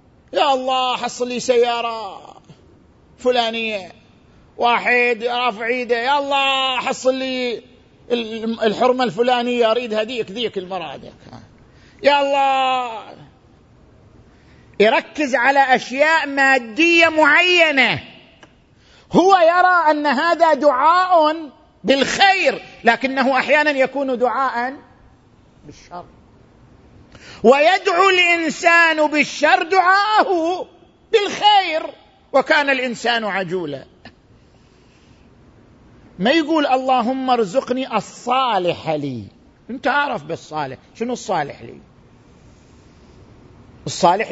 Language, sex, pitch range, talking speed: Arabic, male, 205-280 Hz, 75 wpm